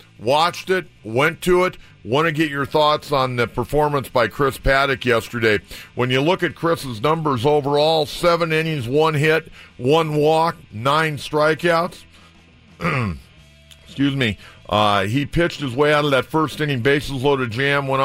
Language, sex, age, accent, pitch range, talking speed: English, male, 50-69, American, 115-145 Hz, 160 wpm